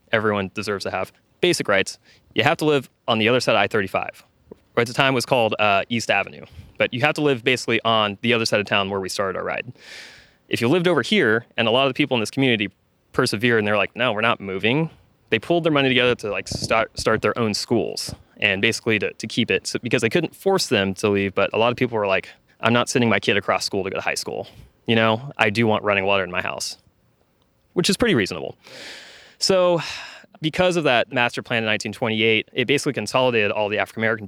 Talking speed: 245 wpm